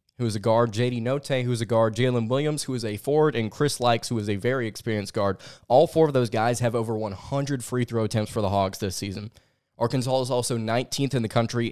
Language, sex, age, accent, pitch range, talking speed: English, male, 20-39, American, 115-135 Hz, 240 wpm